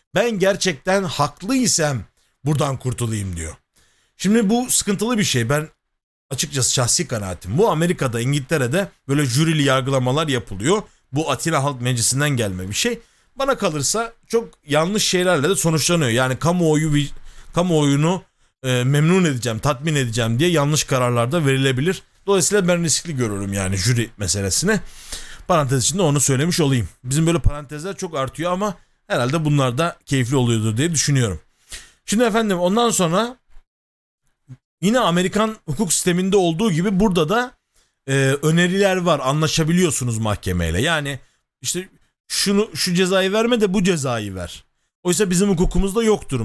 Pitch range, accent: 125-180 Hz, native